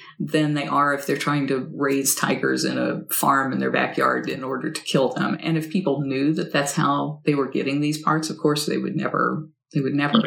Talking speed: 235 wpm